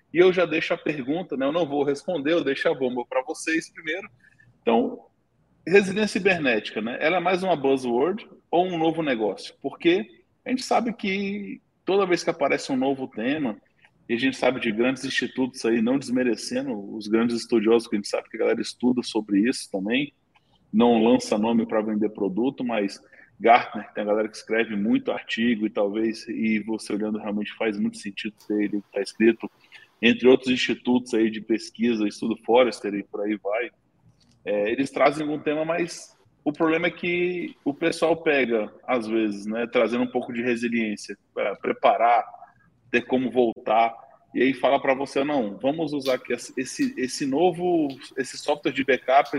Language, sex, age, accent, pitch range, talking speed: Portuguese, male, 20-39, Brazilian, 115-165 Hz, 180 wpm